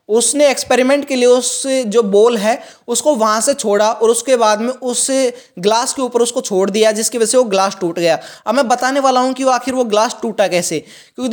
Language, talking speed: Hindi, 230 wpm